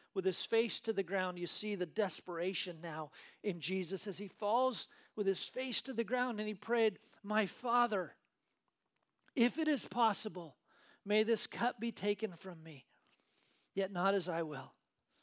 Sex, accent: male, American